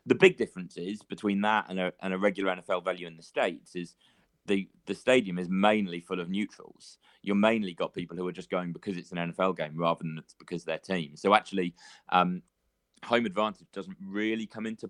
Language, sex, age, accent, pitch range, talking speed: English, male, 30-49, British, 85-105 Hz, 215 wpm